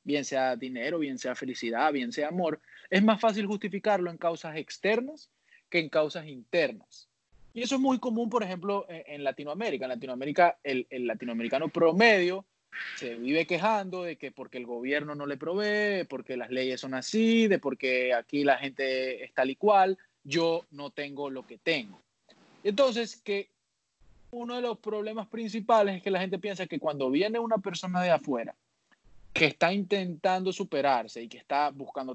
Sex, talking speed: male, 175 wpm